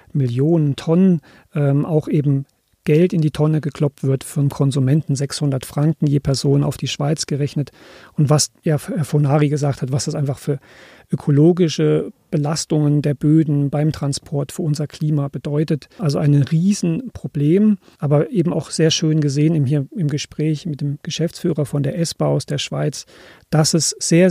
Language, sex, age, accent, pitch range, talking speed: German, male, 40-59, German, 145-160 Hz, 160 wpm